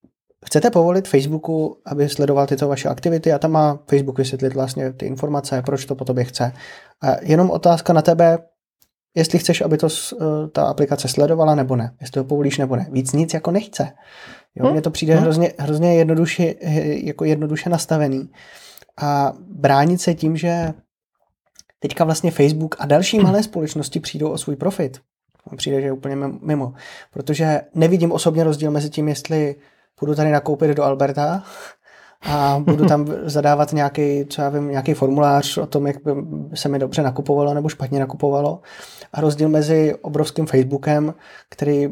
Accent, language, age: native, Czech, 20-39